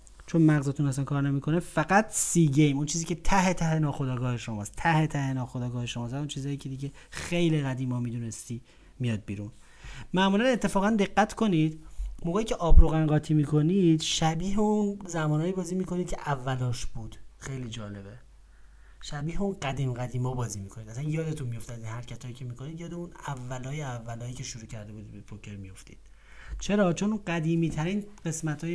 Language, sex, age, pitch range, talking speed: Persian, male, 30-49, 125-165 Hz, 170 wpm